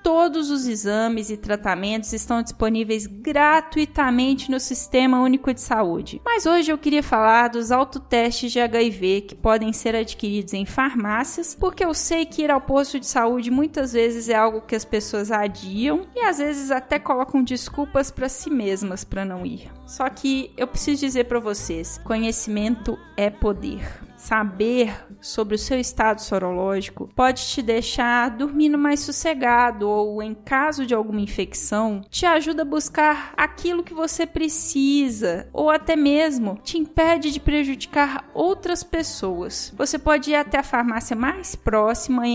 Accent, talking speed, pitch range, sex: Brazilian, 155 wpm, 220-295 Hz, female